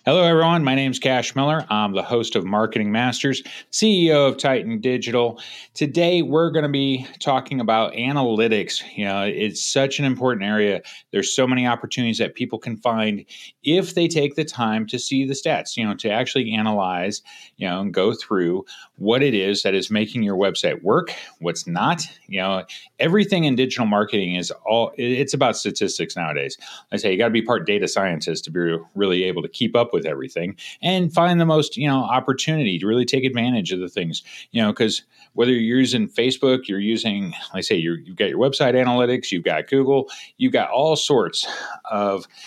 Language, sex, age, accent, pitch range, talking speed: English, male, 30-49, American, 105-150 Hz, 200 wpm